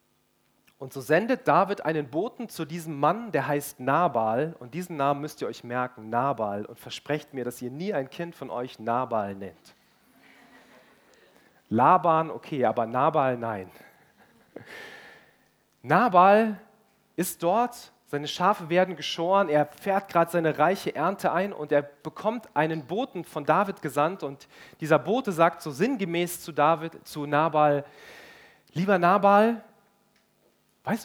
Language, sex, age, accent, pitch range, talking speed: German, male, 40-59, German, 145-195 Hz, 135 wpm